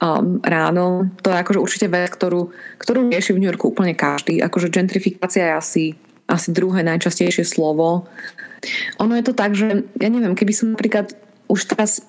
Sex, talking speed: female, 170 wpm